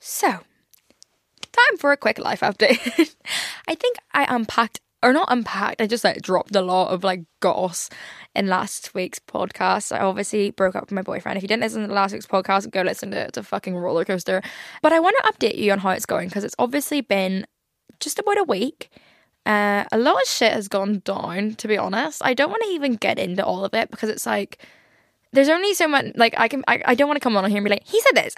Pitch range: 195-285 Hz